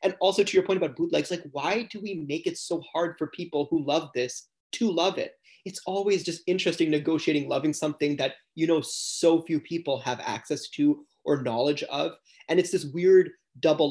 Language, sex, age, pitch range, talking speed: English, male, 20-39, 140-180 Hz, 205 wpm